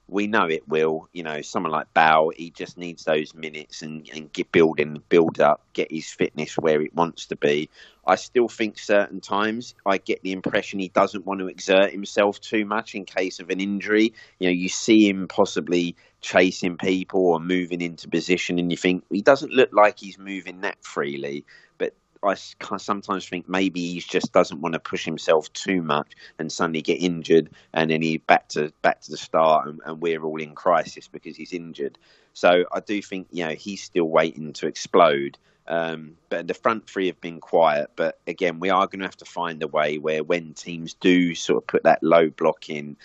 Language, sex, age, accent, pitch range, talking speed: English, male, 30-49, British, 80-95 Hz, 205 wpm